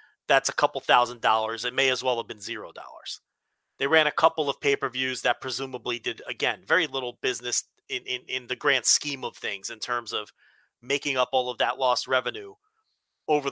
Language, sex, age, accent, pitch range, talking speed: English, male, 40-59, American, 125-150 Hz, 200 wpm